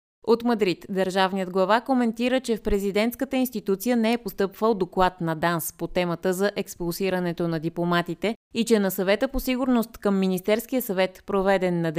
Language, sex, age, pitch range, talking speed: Bulgarian, female, 20-39, 180-225 Hz, 160 wpm